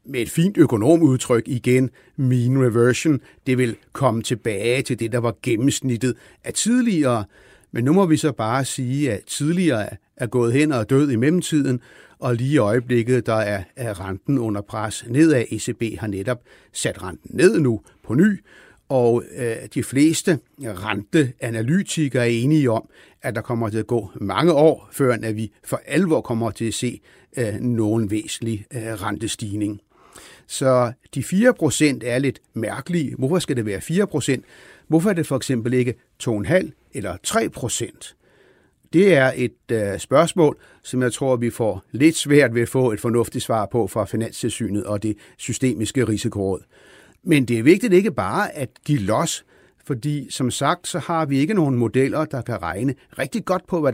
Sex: male